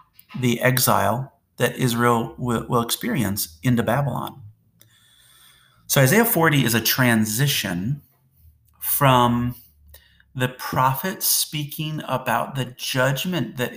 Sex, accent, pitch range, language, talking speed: male, American, 110-135 Hz, English, 95 wpm